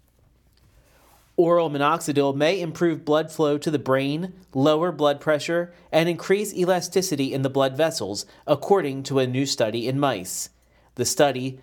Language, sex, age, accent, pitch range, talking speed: English, male, 40-59, American, 130-160 Hz, 145 wpm